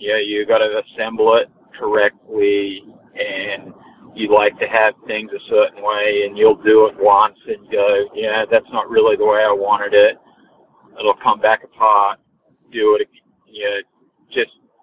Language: English